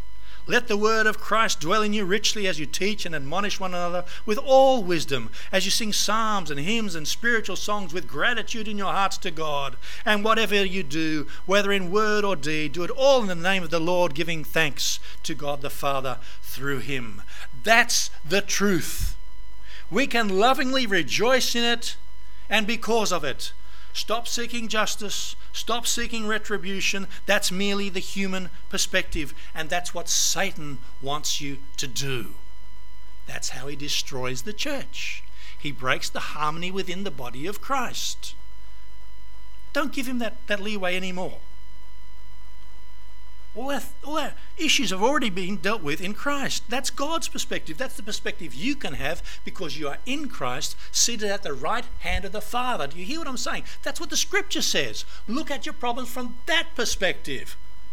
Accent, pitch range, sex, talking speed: Australian, 150-235 Hz, male, 170 wpm